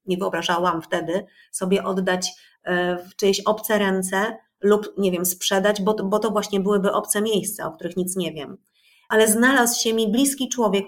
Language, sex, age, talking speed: Polish, female, 30-49, 165 wpm